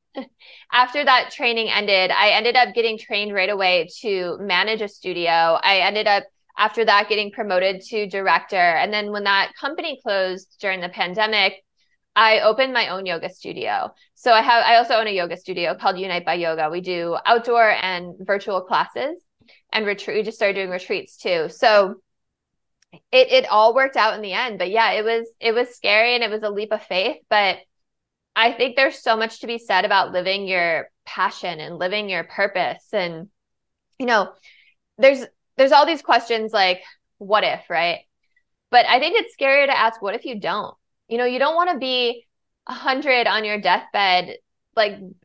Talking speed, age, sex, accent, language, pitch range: 185 wpm, 20-39, female, American, English, 190-245 Hz